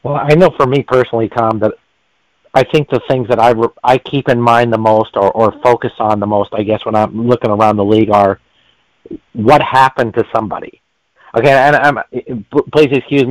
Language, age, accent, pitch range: English, 40-59, American, 115-145 Hz